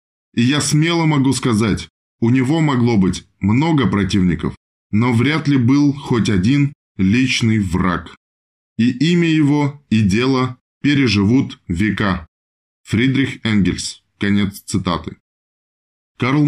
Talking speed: 115 wpm